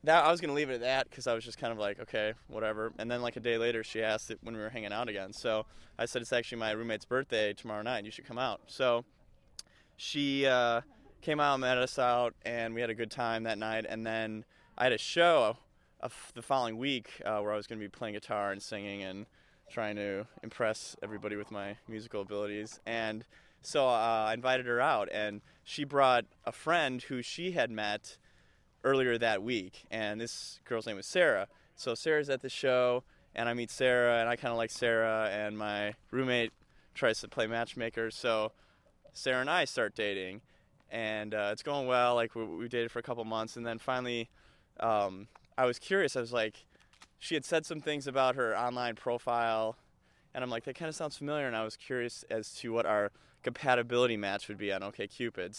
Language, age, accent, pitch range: English, 20-39, American, 110-125 Hz